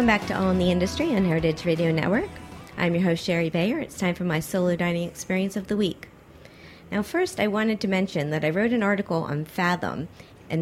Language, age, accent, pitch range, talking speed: English, 40-59, American, 150-195 Hz, 225 wpm